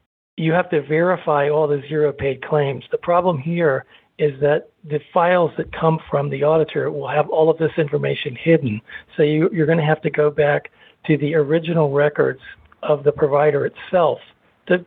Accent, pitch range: American, 145-160 Hz